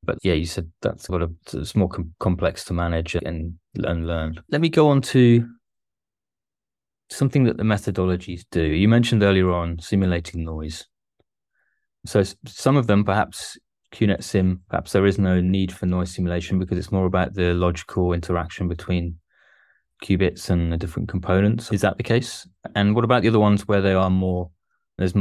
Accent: British